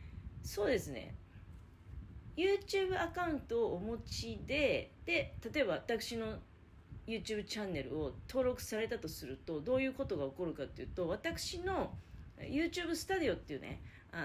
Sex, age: female, 40-59